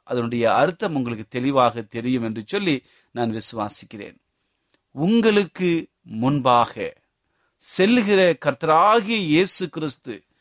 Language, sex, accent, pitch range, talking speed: Tamil, male, native, 125-180 Hz, 80 wpm